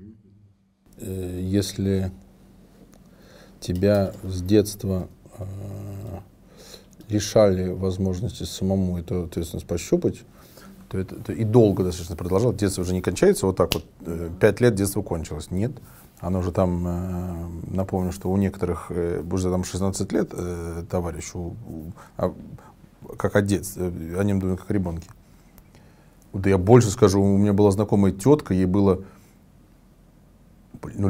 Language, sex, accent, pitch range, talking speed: Russian, male, native, 90-110 Hz, 120 wpm